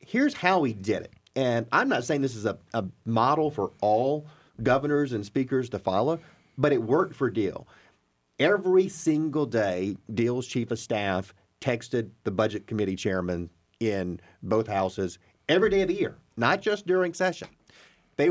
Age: 40-59